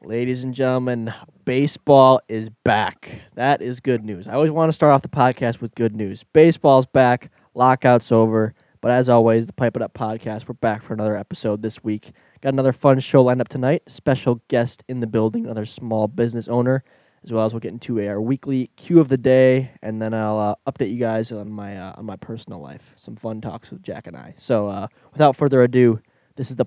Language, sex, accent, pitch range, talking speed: English, male, American, 115-140 Hz, 220 wpm